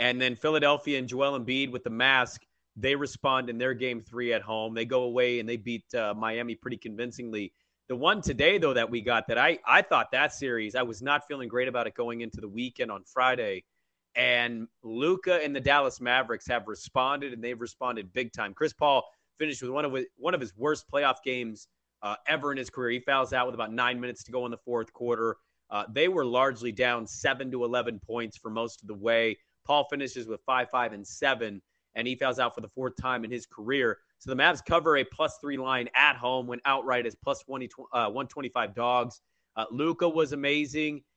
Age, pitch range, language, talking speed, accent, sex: 30-49, 120-140 Hz, English, 215 wpm, American, male